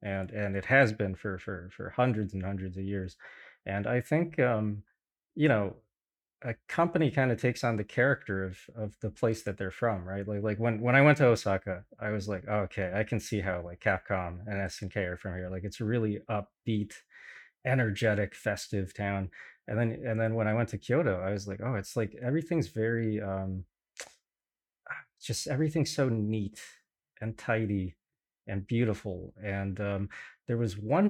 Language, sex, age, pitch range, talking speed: English, male, 30-49, 100-125 Hz, 185 wpm